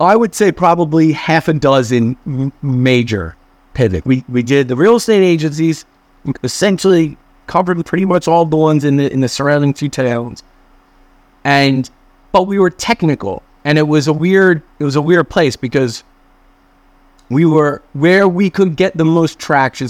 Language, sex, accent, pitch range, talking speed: English, male, American, 115-155 Hz, 170 wpm